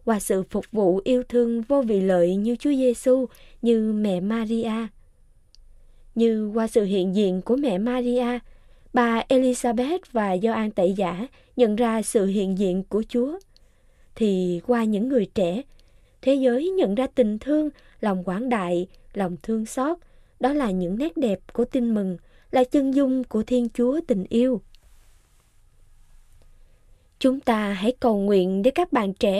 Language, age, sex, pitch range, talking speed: Vietnamese, 20-39, female, 195-255 Hz, 160 wpm